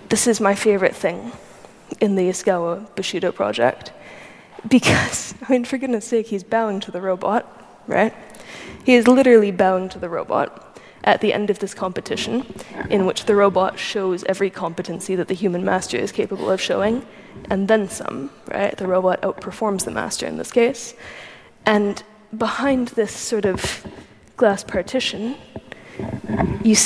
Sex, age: female, 20-39